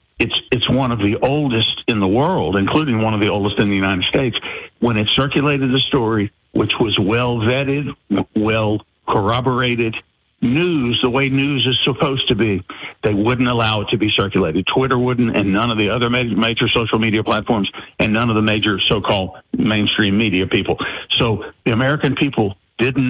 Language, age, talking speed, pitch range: English, 50-69, 175 wpm, 105-135 Hz